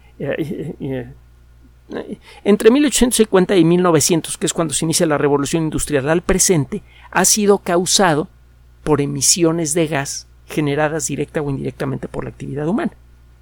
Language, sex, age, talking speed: Spanish, male, 50-69, 130 wpm